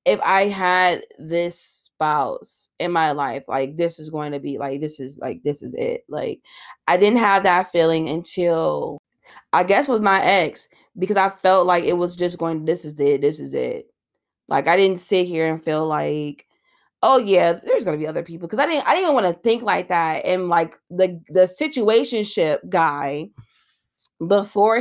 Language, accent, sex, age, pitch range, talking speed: English, American, female, 20-39, 165-205 Hz, 195 wpm